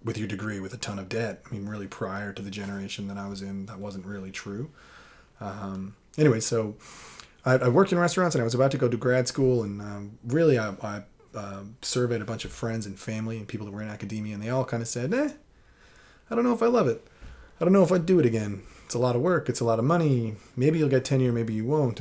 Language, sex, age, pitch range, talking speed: English, male, 30-49, 100-120 Hz, 265 wpm